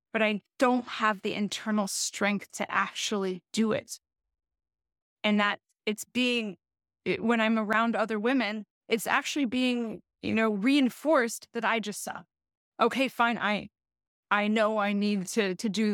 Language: English